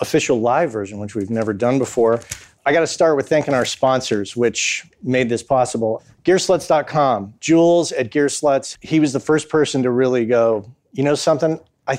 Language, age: English, 40-59